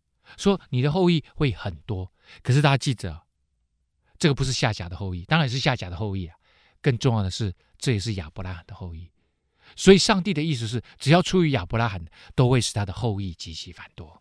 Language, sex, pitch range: Chinese, male, 100-165 Hz